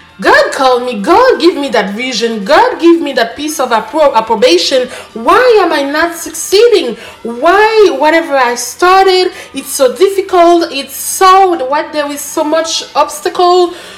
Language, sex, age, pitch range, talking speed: English, female, 20-39, 240-340 Hz, 155 wpm